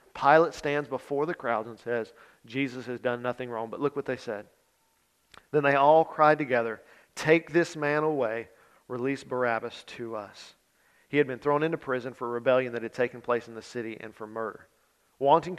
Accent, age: American, 40-59